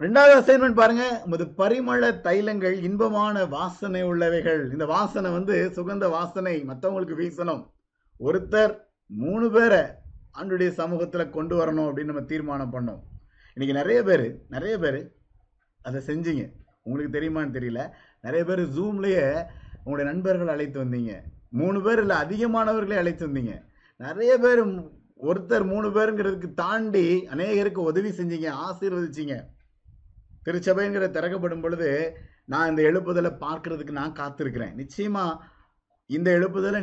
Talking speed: 115 wpm